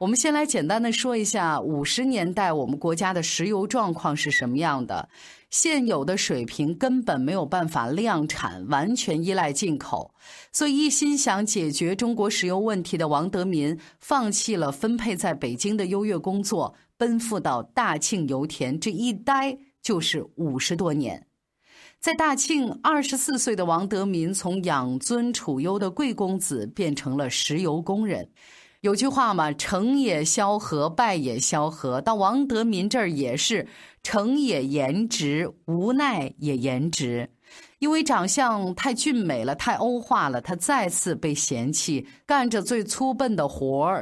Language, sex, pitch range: Chinese, female, 155-240 Hz